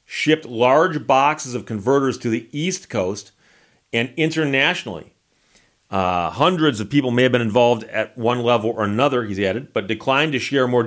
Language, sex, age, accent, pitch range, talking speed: English, male, 40-59, American, 110-140 Hz, 170 wpm